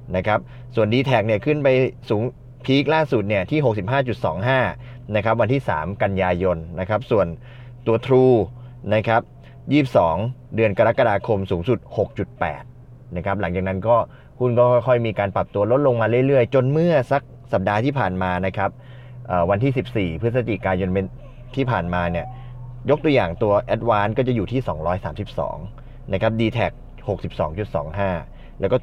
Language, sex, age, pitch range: Thai, male, 20-39, 100-125 Hz